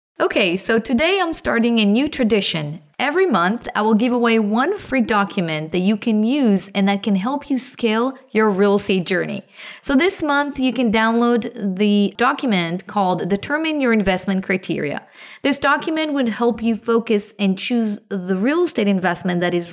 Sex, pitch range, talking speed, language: female, 195-260 Hz, 175 wpm, English